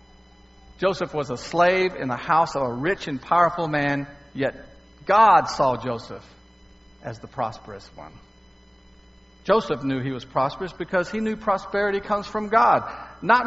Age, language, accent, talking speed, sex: 50-69, English, American, 150 wpm, male